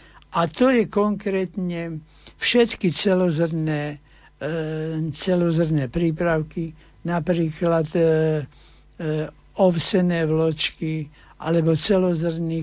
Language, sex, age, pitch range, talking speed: Slovak, male, 60-79, 155-180 Hz, 75 wpm